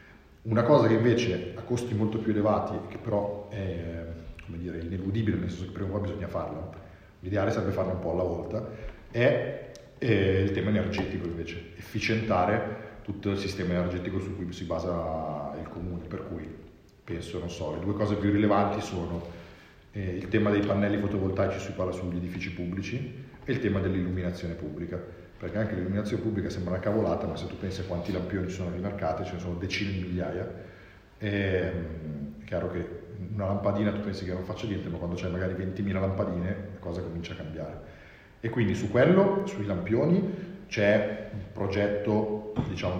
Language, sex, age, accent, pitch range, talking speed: Italian, male, 40-59, native, 90-105 Hz, 175 wpm